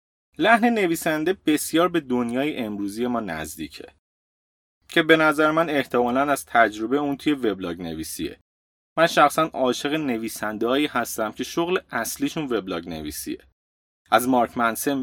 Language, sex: Persian, male